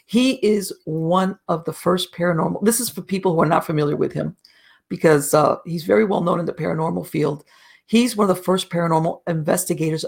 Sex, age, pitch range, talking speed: female, 50-69, 160-185 Hz, 200 wpm